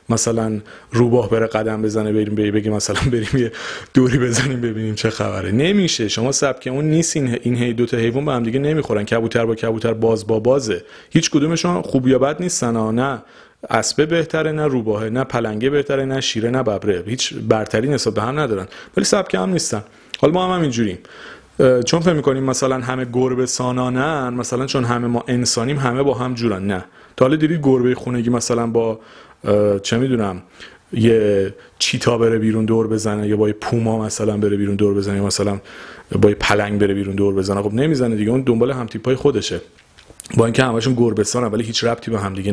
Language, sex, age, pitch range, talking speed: Persian, male, 30-49, 110-130 Hz, 185 wpm